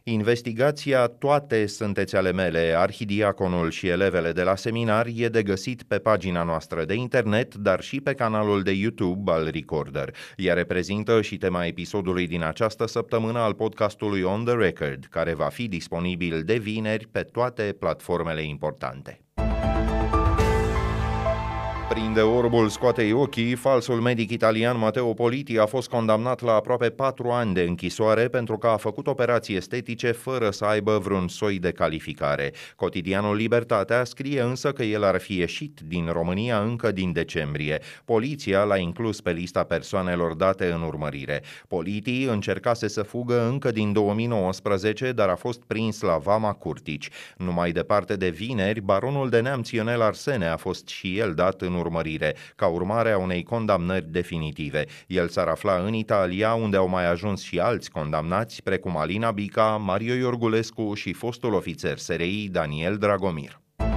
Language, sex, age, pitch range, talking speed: Romanian, male, 30-49, 90-115 Hz, 155 wpm